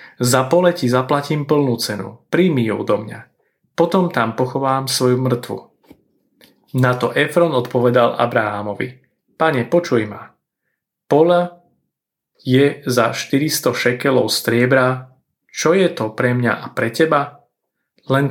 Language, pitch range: Slovak, 120-145 Hz